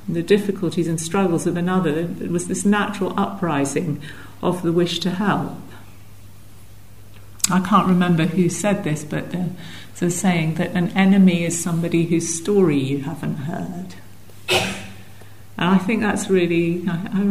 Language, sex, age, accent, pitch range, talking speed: English, female, 50-69, British, 155-195 Hz, 135 wpm